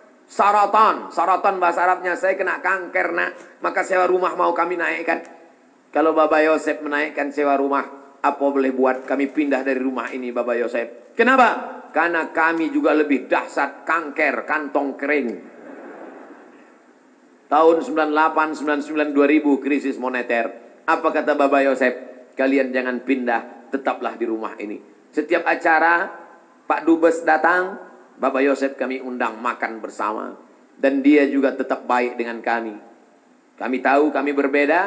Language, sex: Indonesian, male